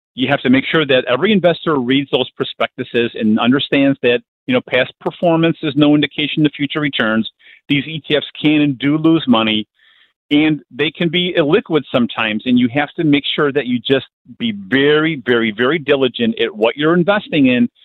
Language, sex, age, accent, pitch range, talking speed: English, male, 50-69, American, 125-170 Hz, 190 wpm